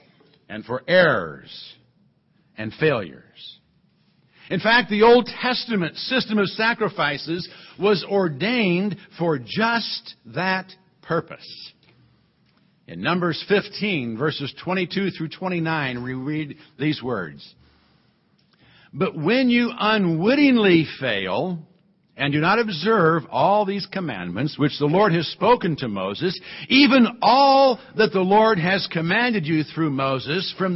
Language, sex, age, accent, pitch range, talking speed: English, male, 60-79, American, 155-210 Hz, 115 wpm